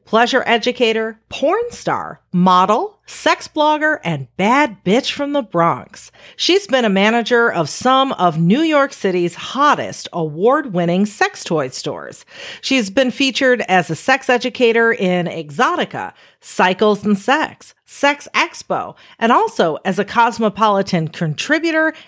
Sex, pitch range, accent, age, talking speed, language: female, 185-275 Hz, American, 40-59, 130 wpm, English